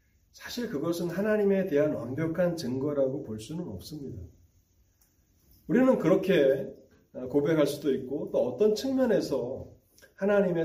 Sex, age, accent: male, 40-59, native